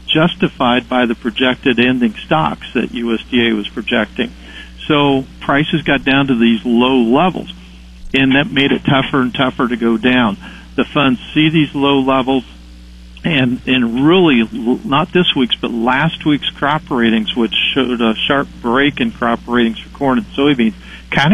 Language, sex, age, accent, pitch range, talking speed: English, male, 50-69, American, 120-145 Hz, 165 wpm